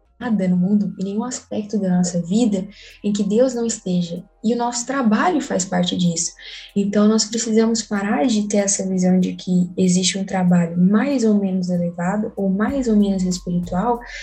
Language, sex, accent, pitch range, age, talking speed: Portuguese, female, Brazilian, 180-225 Hz, 10-29, 175 wpm